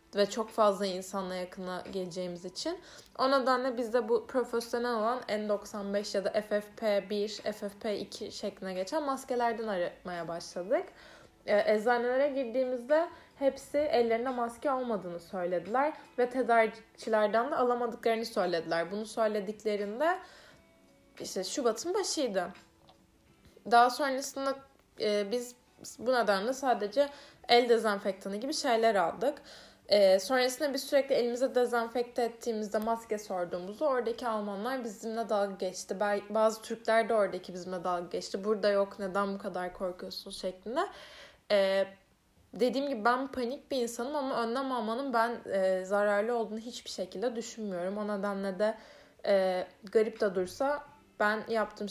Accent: native